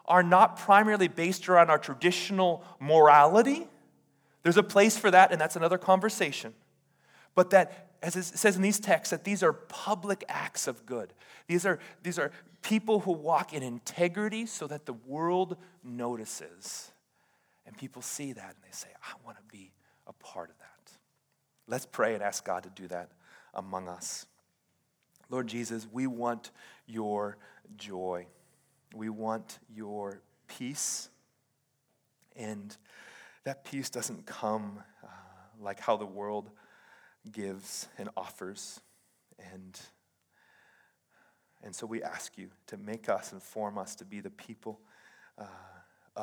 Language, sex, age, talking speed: English, male, 30-49, 145 wpm